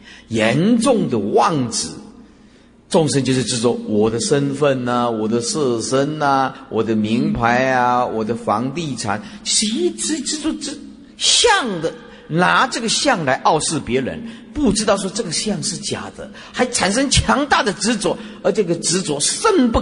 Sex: male